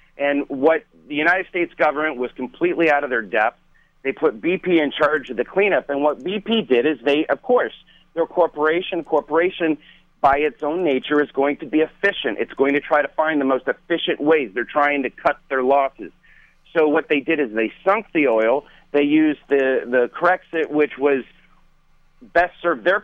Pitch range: 135-170 Hz